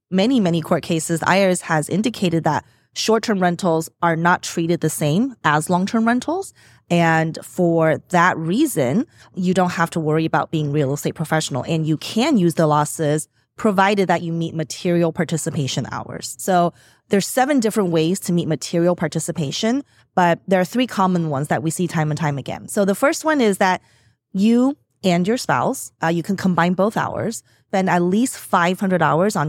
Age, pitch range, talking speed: 20-39, 160-200 Hz, 180 wpm